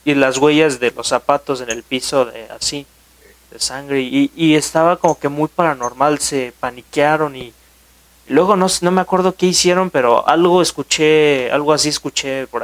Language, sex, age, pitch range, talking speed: Spanish, male, 30-49, 120-155 Hz, 180 wpm